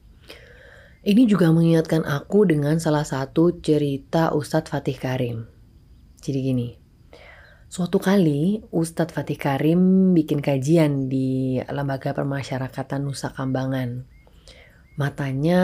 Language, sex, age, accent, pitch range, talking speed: Indonesian, female, 30-49, native, 130-160 Hz, 100 wpm